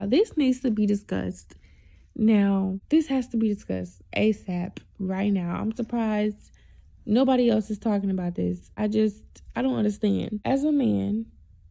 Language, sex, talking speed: English, female, 155 wpm